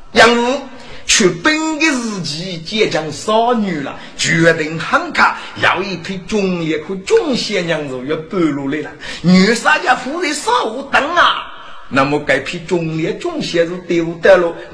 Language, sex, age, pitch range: Chinese, male, 50-69, 170-265 Hz